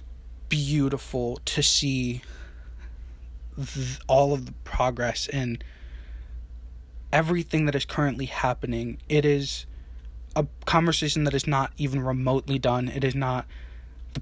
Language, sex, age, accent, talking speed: English, male, 20-39, American, 120 wpm